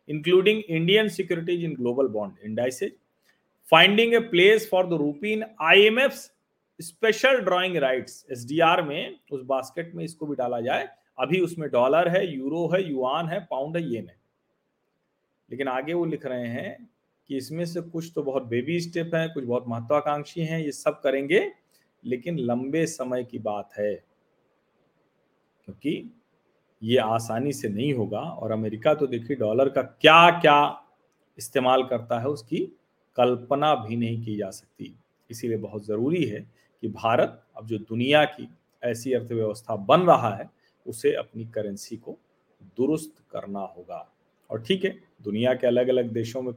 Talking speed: 140 wpm